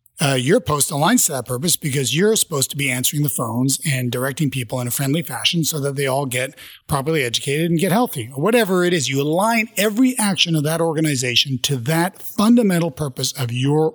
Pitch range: 130-160 Hz